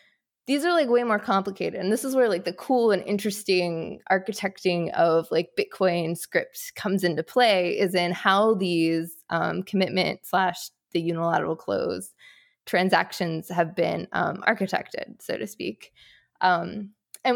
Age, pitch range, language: 20-39, 175-220 Hz, English